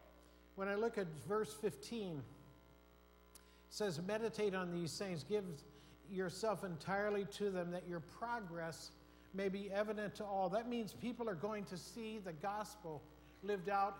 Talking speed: 155 wpm